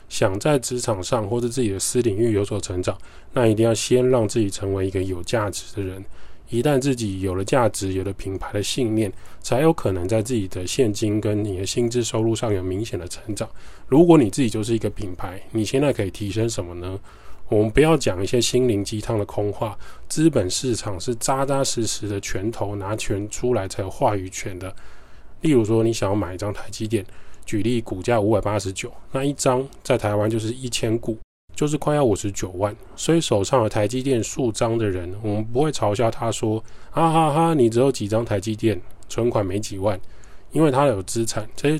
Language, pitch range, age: Chinese, 100-120 Hz, 20-39